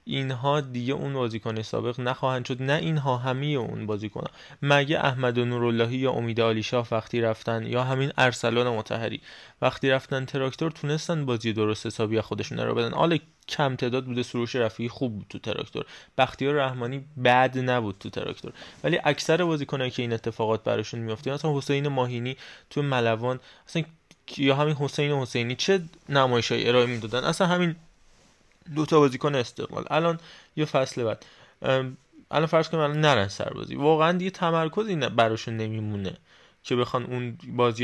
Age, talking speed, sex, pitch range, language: 20-39, 155 wpm, male, 120-150 Hz, Persian